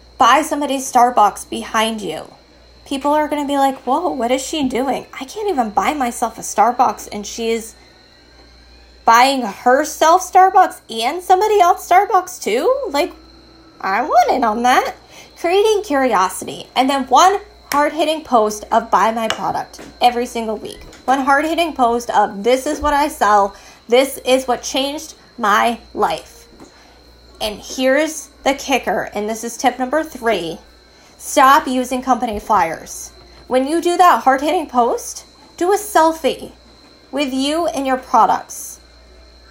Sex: female